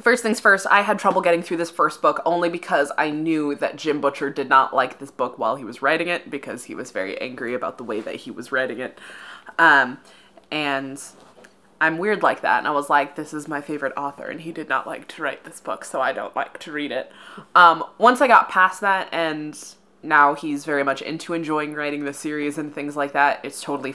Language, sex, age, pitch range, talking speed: English, female, 20-39, 140-170 Hz, 235 wpm